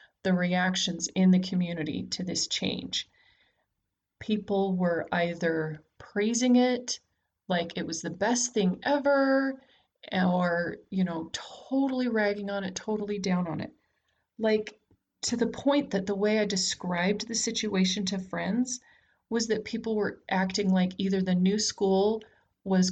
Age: 30-49